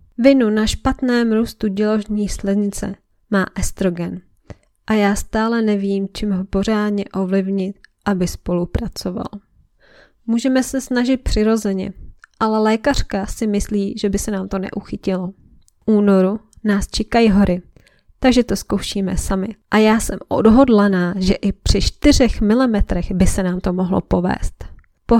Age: 20-39